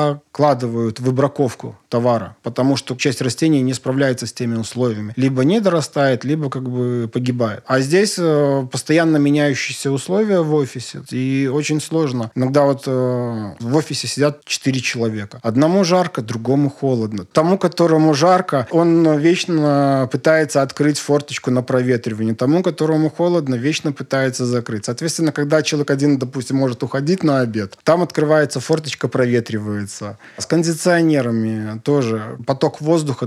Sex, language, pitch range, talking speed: male, Russian, 125-155 Hz, 140 wpm